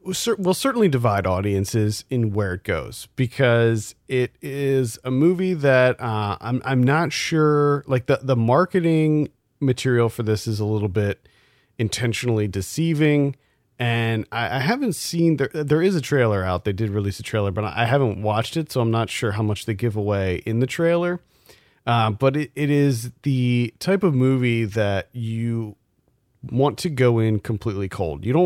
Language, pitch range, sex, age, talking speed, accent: English, 105-135 Hz, male, 40-59, 175 wpm, American